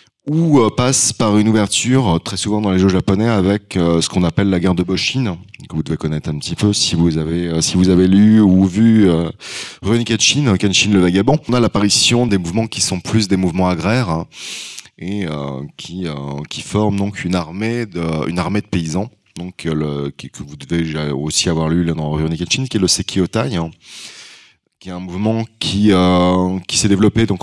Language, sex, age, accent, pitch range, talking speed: French, male, 20-39, French, 85-110 Hz, 205 wpm